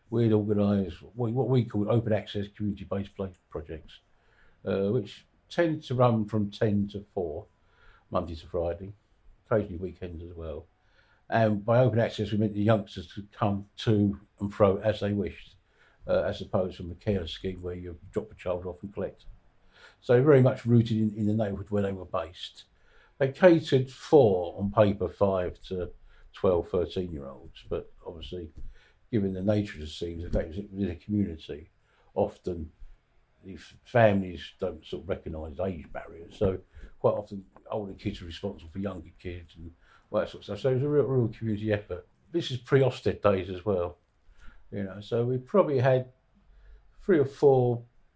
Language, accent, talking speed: English, British, 170 wpm